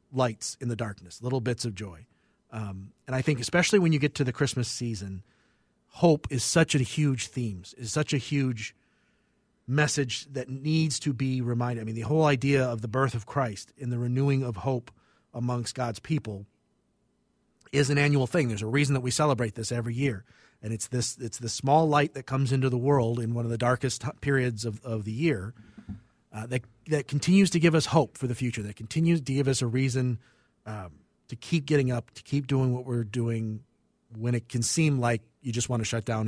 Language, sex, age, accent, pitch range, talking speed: English, male, 40-59, American, 115-140 Hz, 215 wpm